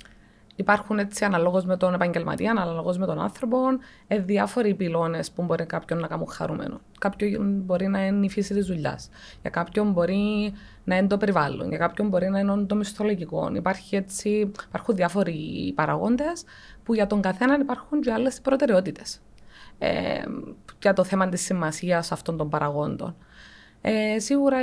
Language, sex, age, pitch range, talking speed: Greek, female, 20-39, 170-215 Hz, 160 wpm